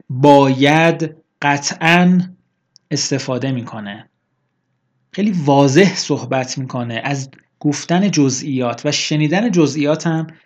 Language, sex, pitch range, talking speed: Persian, male, 130-165 Hz, 80 wpm